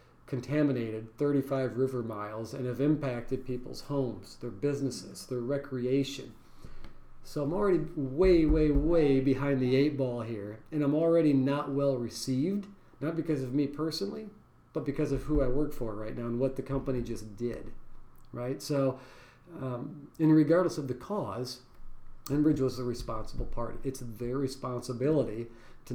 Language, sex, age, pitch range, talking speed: English, male, 40-59, 120-150 Hz, 155 wpm